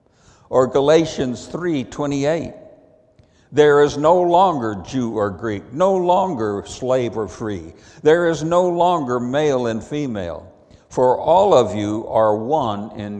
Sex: male